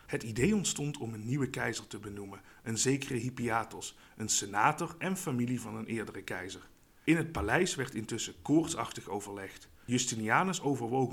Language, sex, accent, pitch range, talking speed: Dutch, male, Dutch, 110-150 Hz, 155 wpm